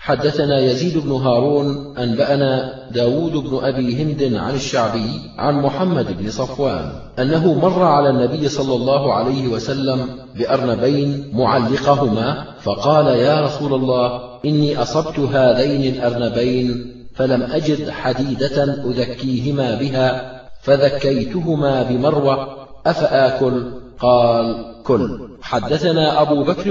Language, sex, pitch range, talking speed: Arabic, male, 130-150 Hz, 105 wpm